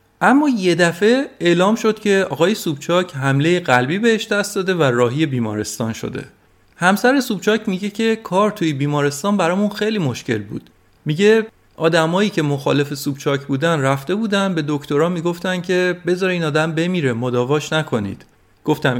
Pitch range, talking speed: 135-195 Hz, 150 wpm